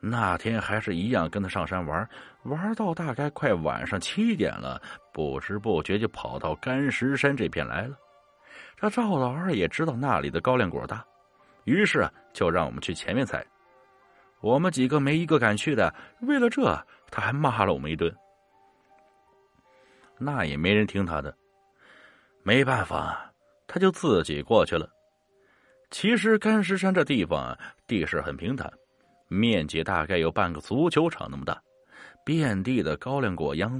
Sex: male